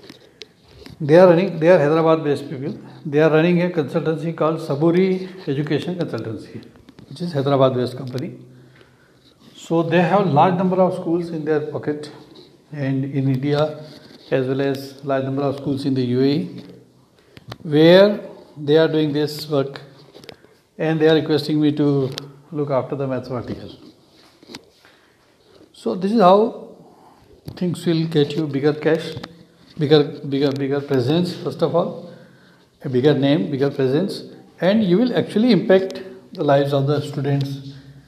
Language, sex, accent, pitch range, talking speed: English, male, Indian, 140-170 Hz, 145 wpm